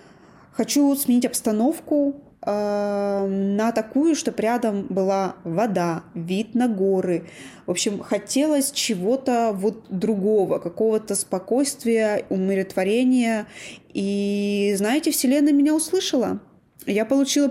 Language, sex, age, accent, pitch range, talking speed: Russian, female, 20-39, native, 190-250 Hz, 100 wpm